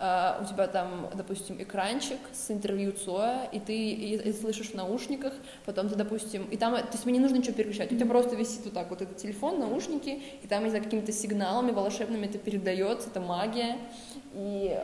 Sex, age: female, 20-39